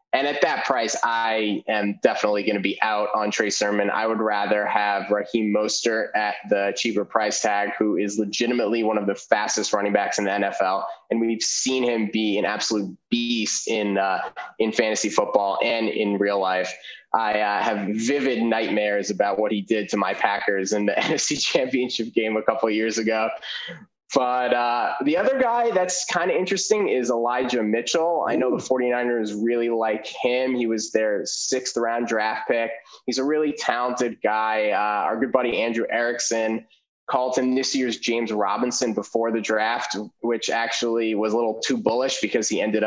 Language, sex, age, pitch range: English, male, 20-39, 105-120 Hz